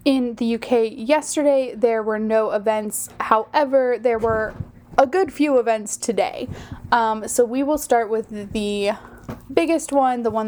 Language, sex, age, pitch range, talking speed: English, female, 20-39, 210-245 Hz, 155 wpm